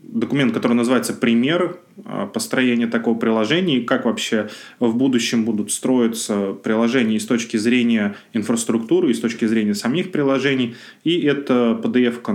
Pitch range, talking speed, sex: 115-150 Hz, 135 wpm, male